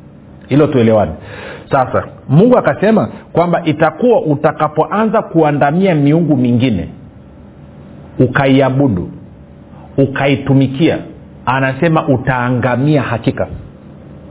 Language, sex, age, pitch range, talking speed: Swahili, male, 50-69, 130-170 Hz, 65 wpm